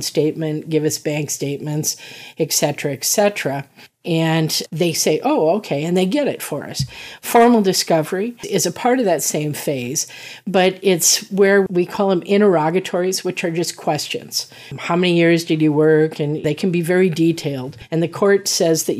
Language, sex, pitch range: English, female, 145-180 Hz